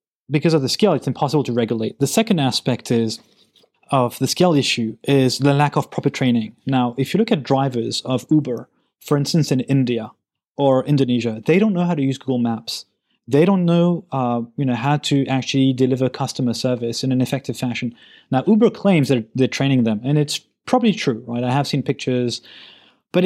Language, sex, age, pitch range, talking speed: English, male, 30-49, 125-160 Hz, 200 wpm